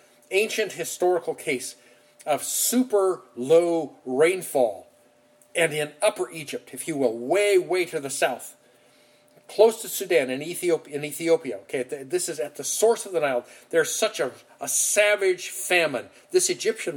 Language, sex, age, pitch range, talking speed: English, male, 50-69, 135-195 Hz, 145 wpm